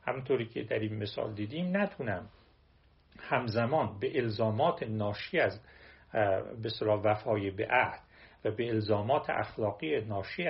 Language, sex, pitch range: Persian, male, 110-160 Hz